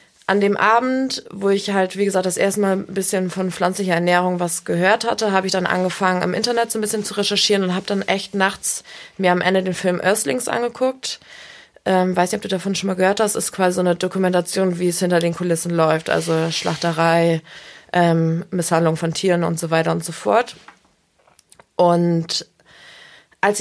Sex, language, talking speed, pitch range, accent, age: female, German, 195 wpm, 170-200 Hz, German, 20-39